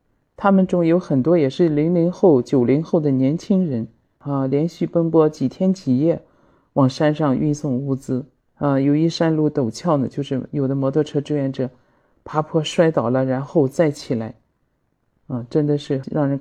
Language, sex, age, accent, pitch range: Chinese, male, 50-69, native, 130-160 Hz